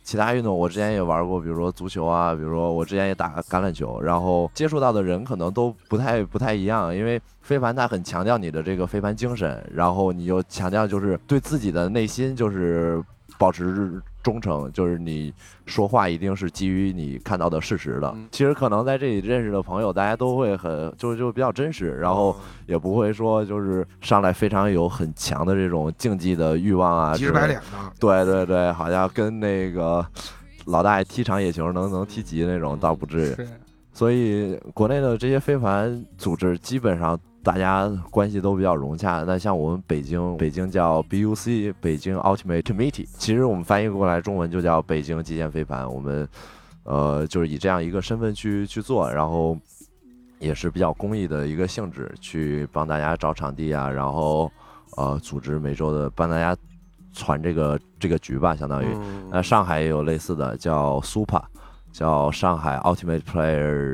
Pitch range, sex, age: 80-105 Hz, male, 20-39